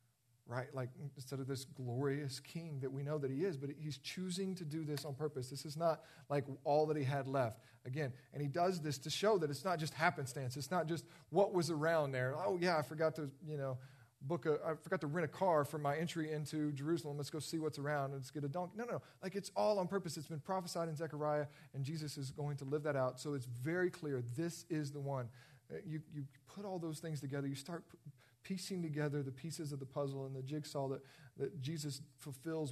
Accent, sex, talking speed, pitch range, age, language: American, male, 240 wpm, 130-155 Hz, 40-59, English